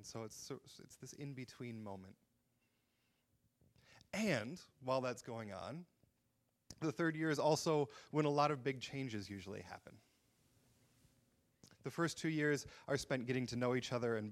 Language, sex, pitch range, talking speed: English, male, 110-140 Hz, 160 wpm